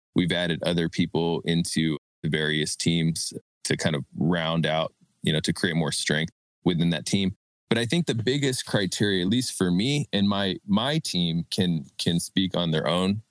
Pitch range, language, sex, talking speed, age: 85-120 Hz, English, male, 190 wpm, 20-39